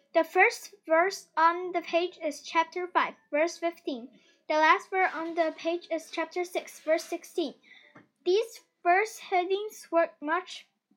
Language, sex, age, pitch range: Chinese, female, 10-29, 315-365 Hz